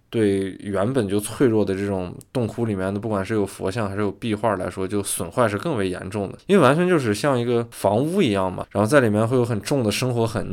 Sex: male